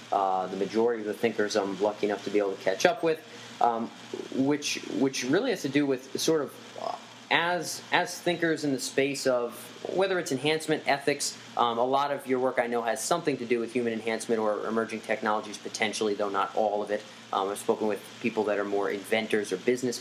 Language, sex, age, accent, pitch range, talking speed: English, male, 30-49, American, 115-140 Hz, 215 wpm